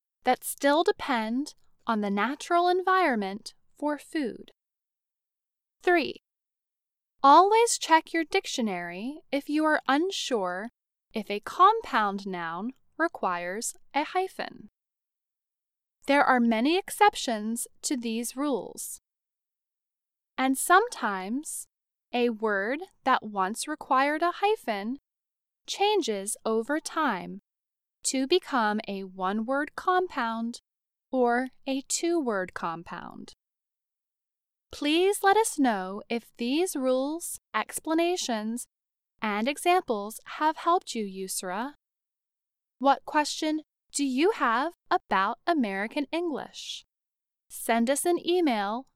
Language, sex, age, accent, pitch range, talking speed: English, female, 10-29, American, 225-335 Hz, 95 wpm